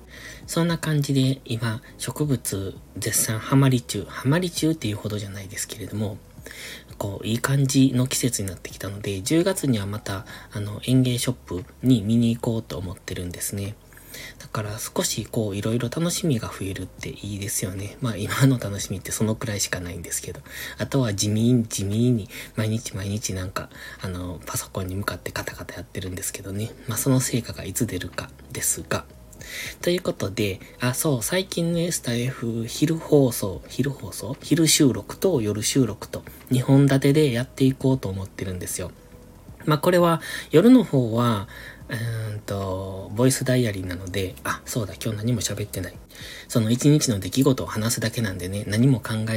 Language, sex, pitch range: Japanese, male, 100-135 Hz